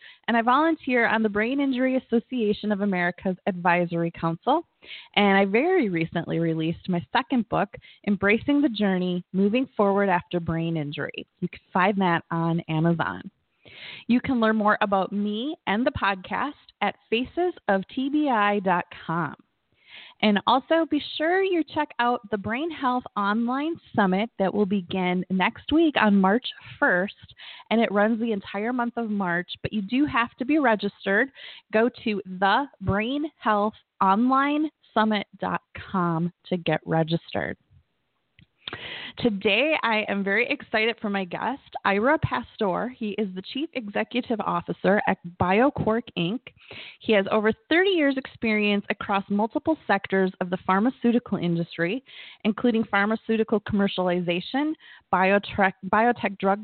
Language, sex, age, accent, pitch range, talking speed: English, female, 20-39, American, 195-250 Hz, 130 wpm